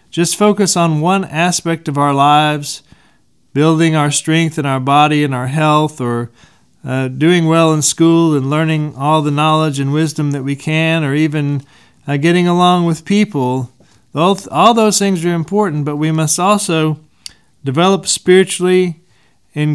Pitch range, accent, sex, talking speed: 140-180 Hz, American, male, 160 wpm